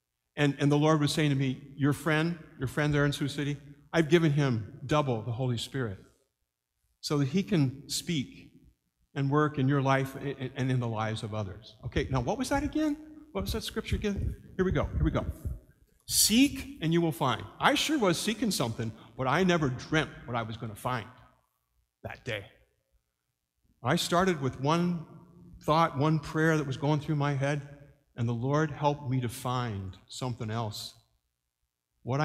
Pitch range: 115-165 Hz